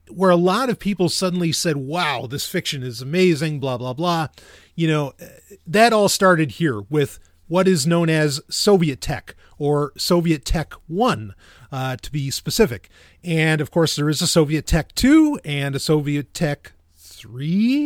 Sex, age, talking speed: male, 30-49, 170 wpm